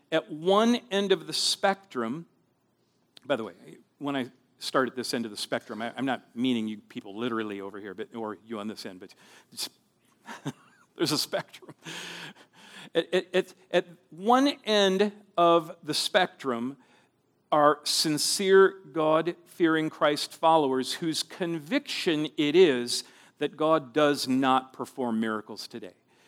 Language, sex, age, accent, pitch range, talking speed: English, male, 50-69, American, 130-185 Hz, 130 wpm